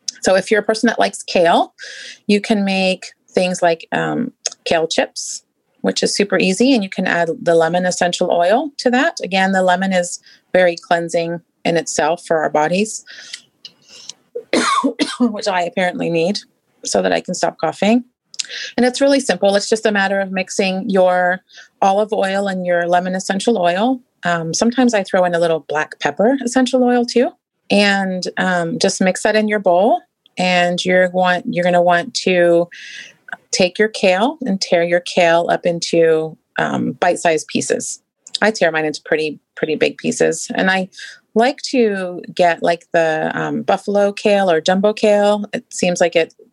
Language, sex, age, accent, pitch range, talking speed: English, female, 30-49, American, 175-220 Hz, 175 wpm